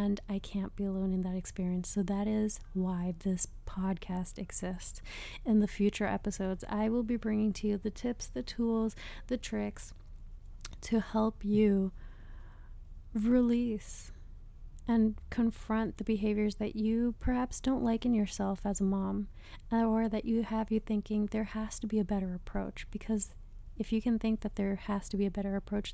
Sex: female